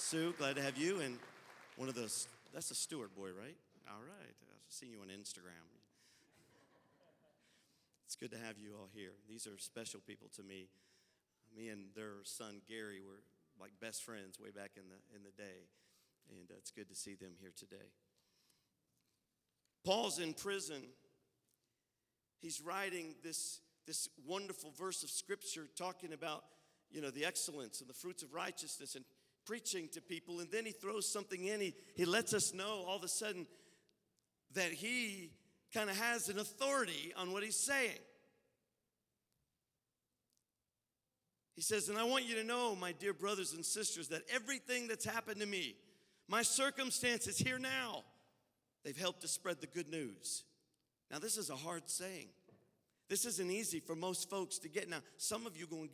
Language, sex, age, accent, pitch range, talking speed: English, male, 50-69, American, 125-200 Hz, 175 wpm